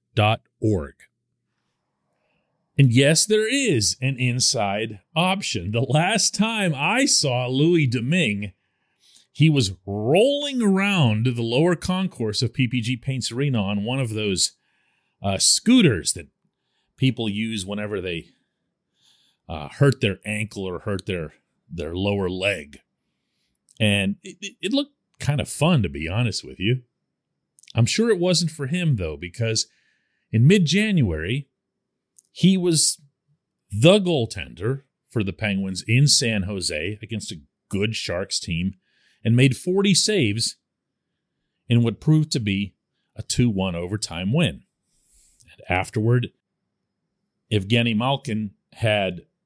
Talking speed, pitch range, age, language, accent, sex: 125 wpm, 100-145 Hz, 40-59, English, American, male